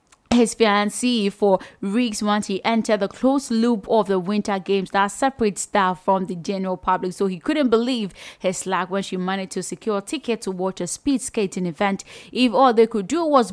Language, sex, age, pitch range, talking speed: English, female, 20-39, 195-245 Hz, 205 wpm